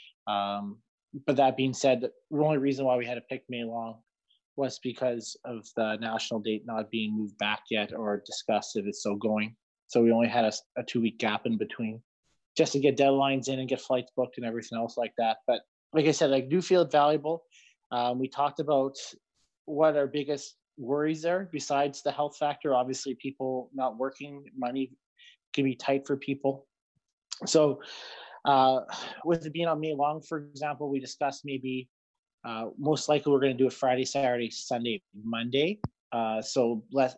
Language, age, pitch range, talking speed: English, 20-39, 120-145 Hz, 185 wpm